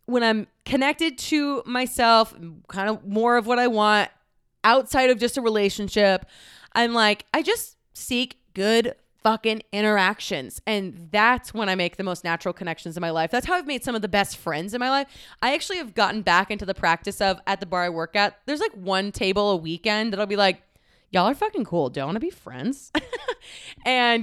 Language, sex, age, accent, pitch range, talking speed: English, female, 20-39, American, 185-245 Hz, 210 wpm